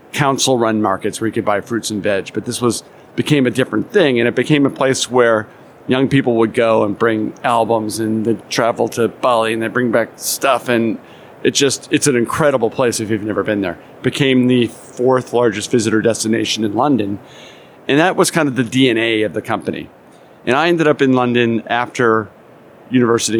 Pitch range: 110-130 Hz